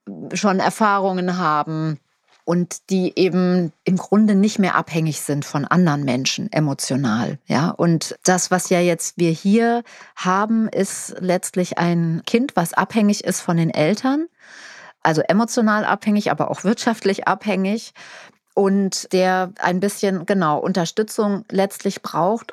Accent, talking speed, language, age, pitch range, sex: German, 130 wpm, German, 30-49, 170-205 Hz, female